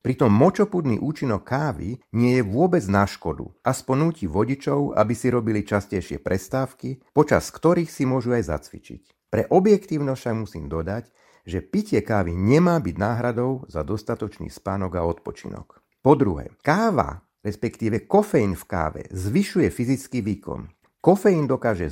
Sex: male